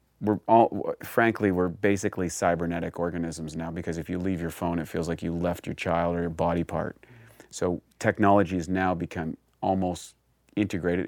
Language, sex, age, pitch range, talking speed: English, male, 30-49, 85-100 Hz, 175 wpm